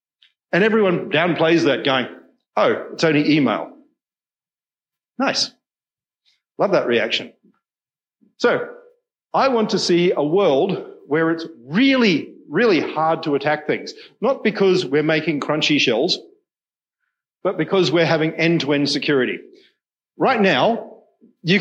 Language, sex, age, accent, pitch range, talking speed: English, male, 50-69, Australian, 140-200 Hz, 120 wpm